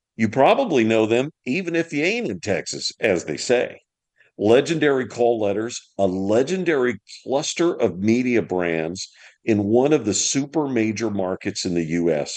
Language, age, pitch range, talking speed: English, 50-69, 90-120 Hz, 155 wpm